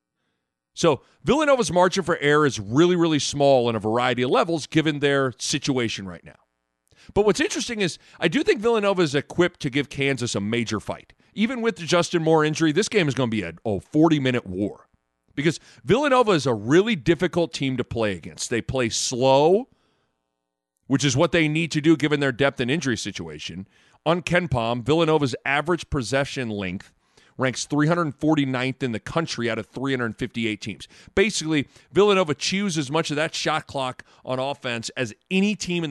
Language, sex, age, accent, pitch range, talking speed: English, male, 40-59, American, 115-165 Hz, 180 wpm